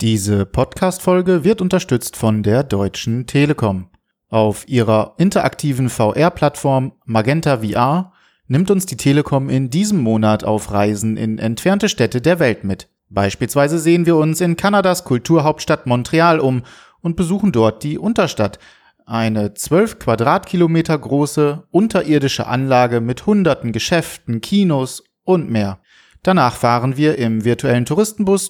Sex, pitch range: male, 115-175 Hz